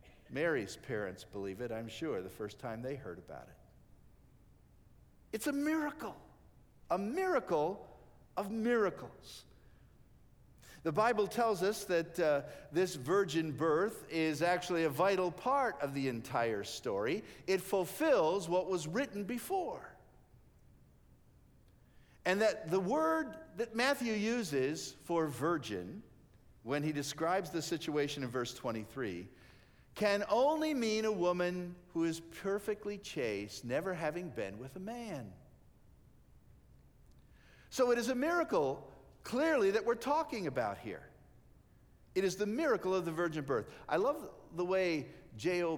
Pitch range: 140-210 Hz